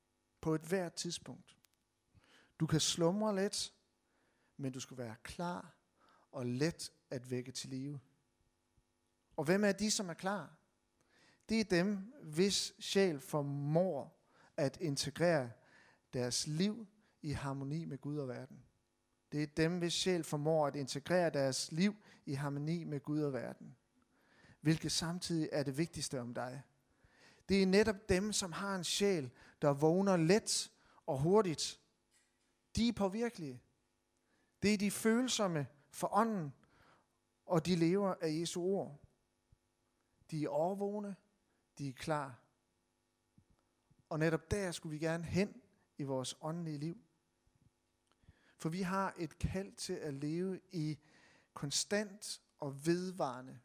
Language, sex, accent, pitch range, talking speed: Danish, male, native, 130-185 Hz, 135 wpm